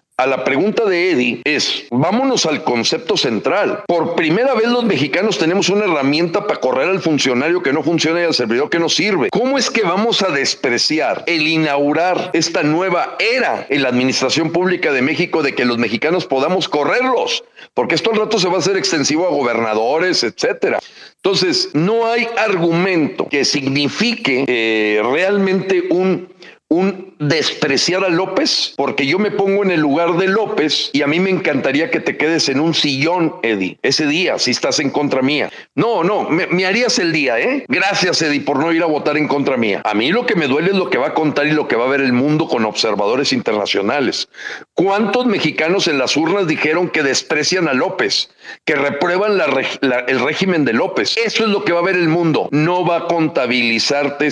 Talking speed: 200 wpm